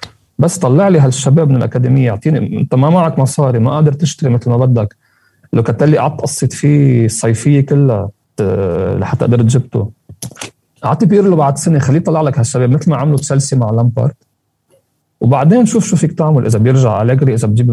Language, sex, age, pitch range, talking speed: Arabic, male, 40-59, 120-160 Hz, 175 wpm